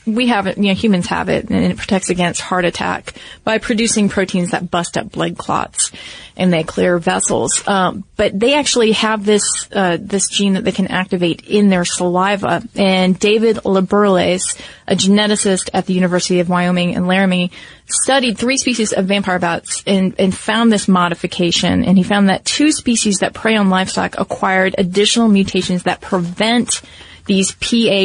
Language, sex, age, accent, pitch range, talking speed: English, female, 30-49, American, 180-210 Hz, 175 wpm